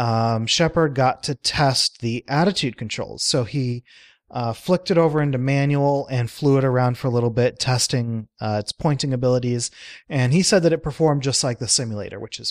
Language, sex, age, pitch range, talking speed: English, male, 30-49, 115-145 Hz, 195 wpm